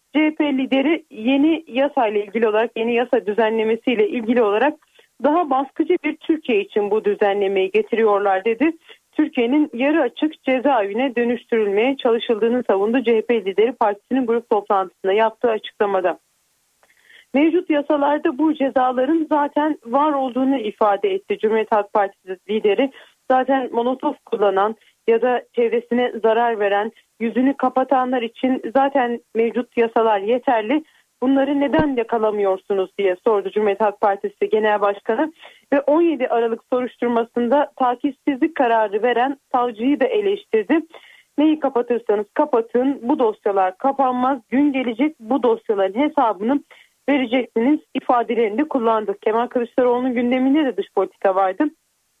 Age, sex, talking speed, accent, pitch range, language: 40-59, female, 120 wpm, native, 220-280 Hz, Turkish